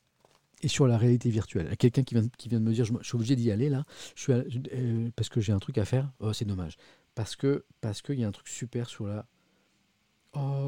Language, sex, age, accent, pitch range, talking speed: French, male, 40-59, French, 105-130 Hz, 265 wpm